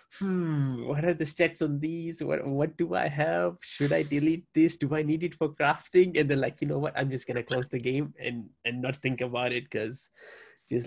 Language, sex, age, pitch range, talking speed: English, male, 20-39, 125-160 Hz, 230 wpm